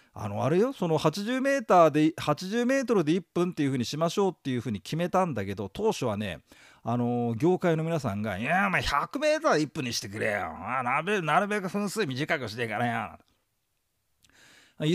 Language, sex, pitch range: Japanese, male, 115-195 Hz